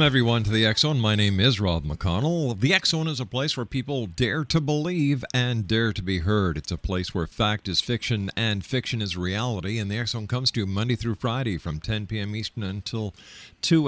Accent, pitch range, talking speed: American, 90-125 Hz, 215 wpm